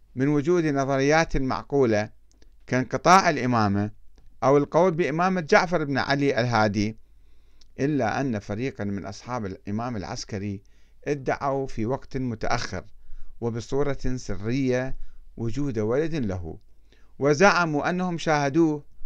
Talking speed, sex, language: 105 wpm, male, Arabic